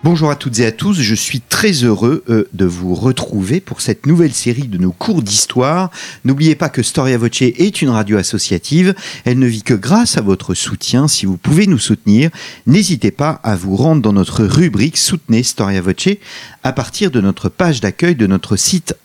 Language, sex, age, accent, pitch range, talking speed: French, male, 40-59, French, 100-155 Hz, 200 wpm